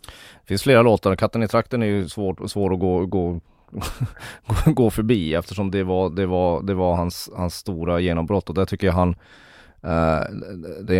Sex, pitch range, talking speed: male, 85-100 Hz, 180 wpm